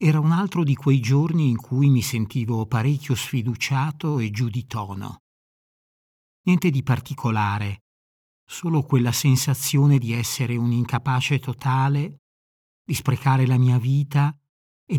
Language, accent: Italian, native